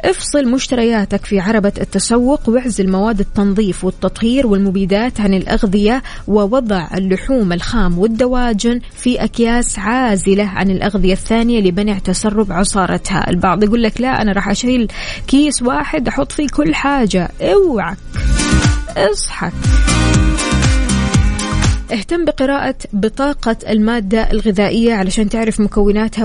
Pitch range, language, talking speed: 195-235 Hz, Arabic, 110 wpm